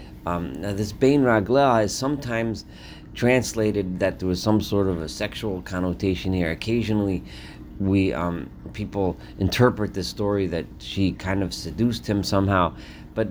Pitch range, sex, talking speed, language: 90-110 Hz, male, 150 wpm, English